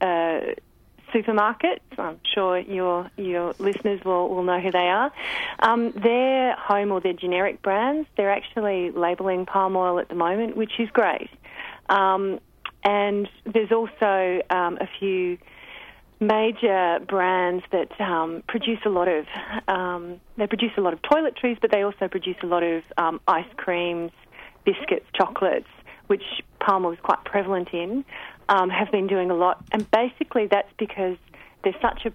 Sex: female